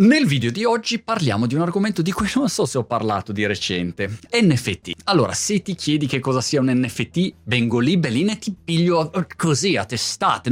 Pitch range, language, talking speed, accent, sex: 115-185 Hz, Italian, 200 wpm, native, male